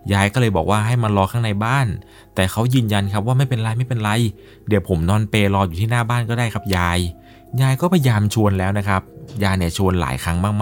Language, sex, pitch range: Thai, male, 95-125 Hz